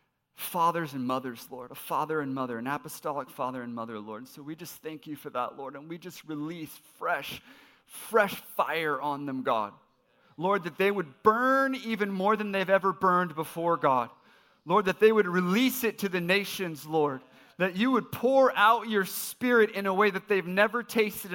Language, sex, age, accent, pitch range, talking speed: English, male, 30-49, American, 130-195 Hz, 195 wpm